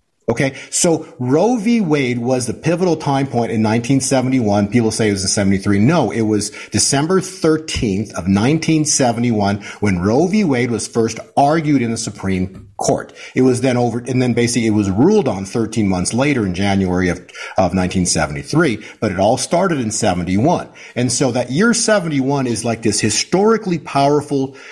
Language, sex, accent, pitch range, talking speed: English, male, American, 110-155 Hz, 170 wpm